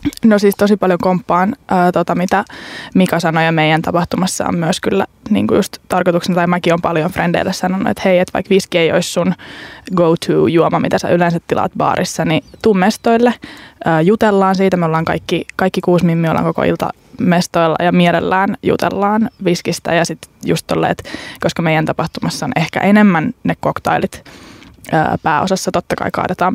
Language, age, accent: Finnish, 20-39, native